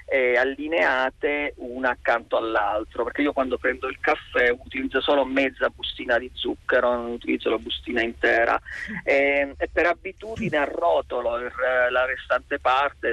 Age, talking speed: 30-49, 135 wpm